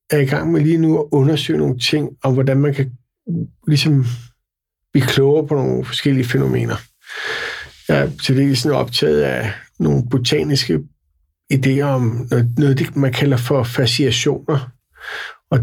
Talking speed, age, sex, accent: 155 wpm, 60-79, male, native